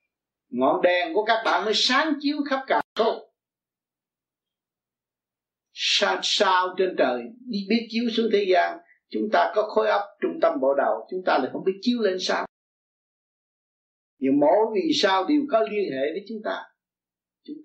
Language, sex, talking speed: Vietnamese, male, 165 wpm